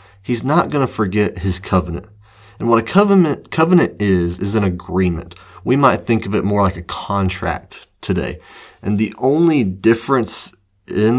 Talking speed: 165 wpm